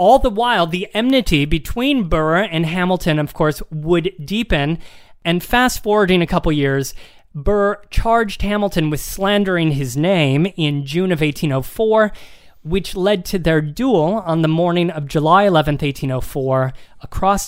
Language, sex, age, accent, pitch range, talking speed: English, male, 30-49, American, 150-195 Hz, 150 wpm